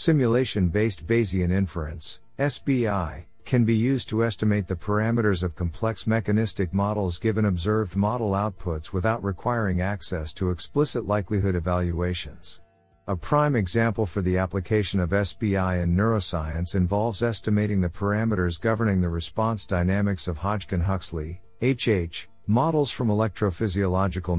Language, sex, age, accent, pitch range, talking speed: English, male, 50-69, American, 90-115 Hz, 125 wpm